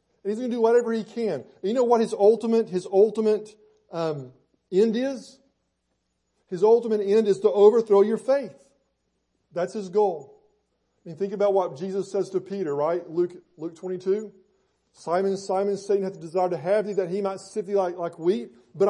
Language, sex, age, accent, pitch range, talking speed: English, male, 40-59, American, 165-200 Hz, 195 wpm